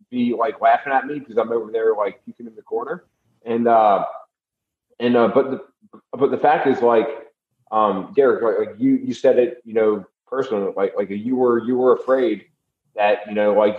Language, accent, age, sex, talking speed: English, American, 30-49, male, 205 wpm